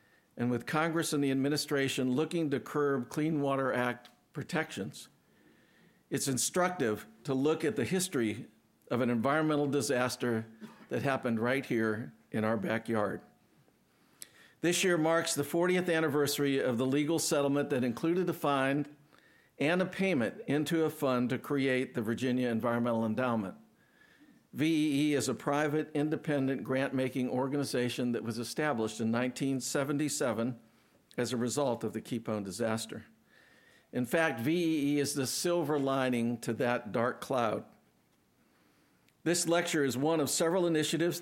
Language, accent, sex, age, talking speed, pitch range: English, American, male, 60-79, 140 wpm, 120-150 Hz